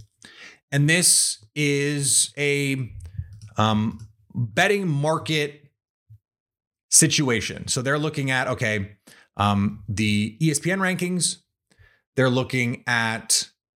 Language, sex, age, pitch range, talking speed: English, male, 30-49, 110-145 Hz, 85 wpm